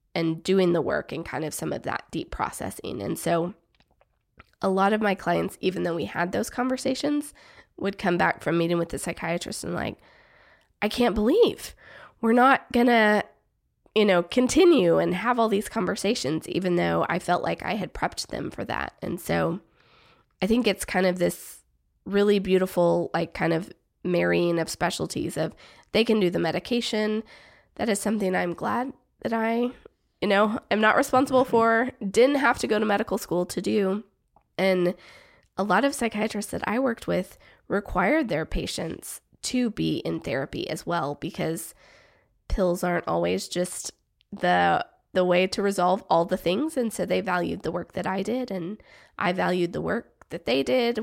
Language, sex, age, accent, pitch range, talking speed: English, female, 20-39, American, 175-225 Hz, 180 wpm